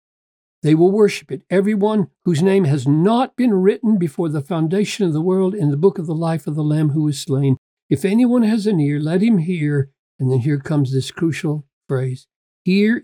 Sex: male